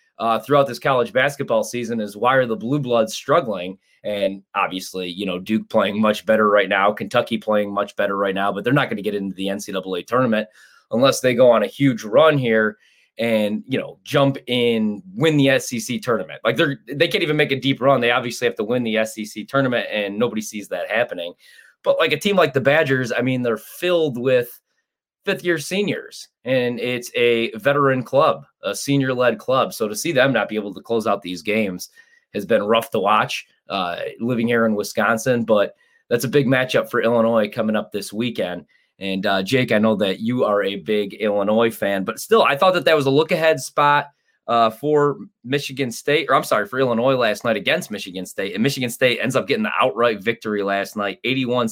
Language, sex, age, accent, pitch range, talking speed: English, male, 20-39, American, 110-145 Hz, 210 wpm